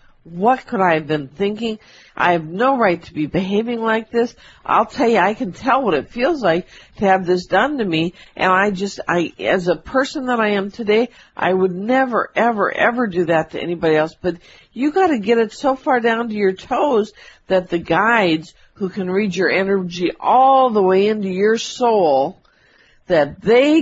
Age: 50-69